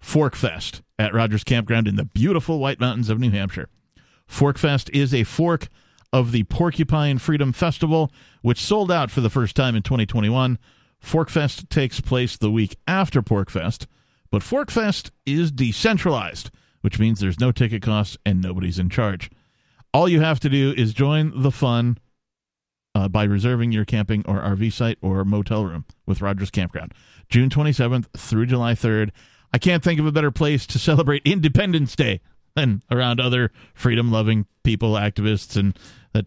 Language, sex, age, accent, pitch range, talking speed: English, male, 40-59, American, 105-135 Hz, 160 wpm